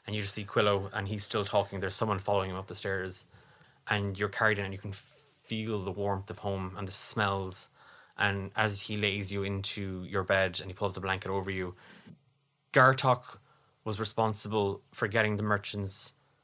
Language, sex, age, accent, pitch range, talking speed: English, male, 20-39, Irish, 100-115 Hz, 195 wpm